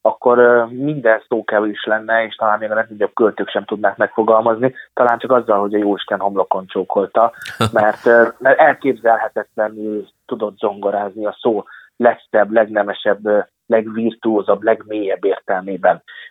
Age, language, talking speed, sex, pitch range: 30-49, Hungarian, 120 wpm, male, 105-125 Hz